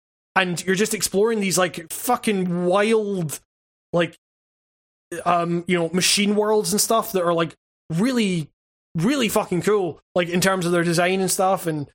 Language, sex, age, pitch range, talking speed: English, male, 20-39, 175-205 Hz, 160 wpm